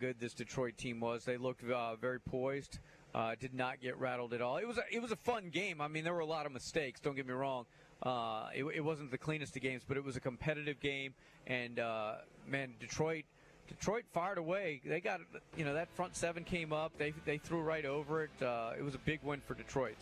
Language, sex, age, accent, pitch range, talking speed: English, male, 40-59, American, 130-170 Hz, 245 wpm